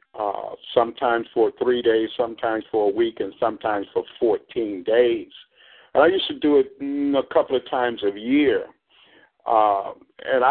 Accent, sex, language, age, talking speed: American, male, English, 50-69, 165 wpm